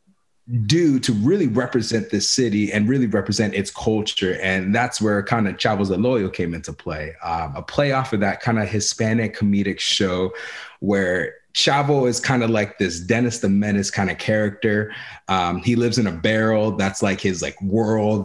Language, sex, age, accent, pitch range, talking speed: English, male, 20-39, American, 100-130 Hz, 180 wpm